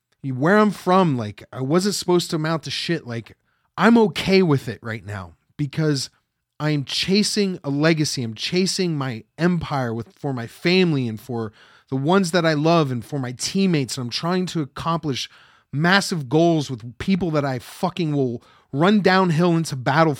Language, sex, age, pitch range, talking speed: English, male, 30-49, 130-175 Hz, 180 wpm